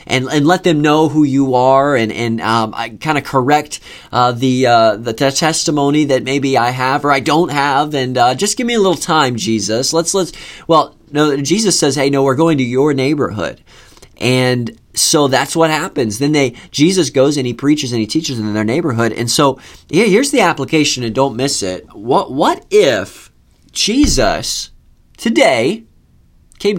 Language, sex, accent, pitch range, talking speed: English, male, American, 115-155 Hz, 195 wpm